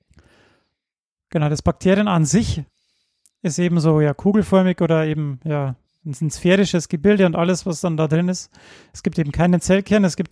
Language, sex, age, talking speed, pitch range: German, male, 30-49, 175 wpm, 160-190 Hz